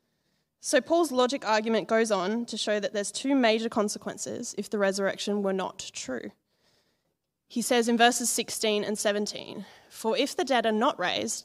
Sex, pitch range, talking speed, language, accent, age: female, 205-235 Hz, 175 wpm, English, Australian, 20-39